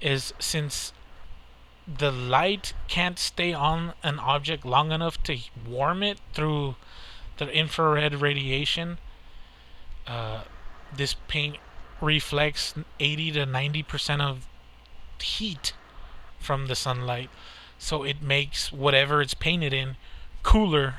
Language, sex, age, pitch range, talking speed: English, male, 30-49, 110-155 Hz, 110 wpm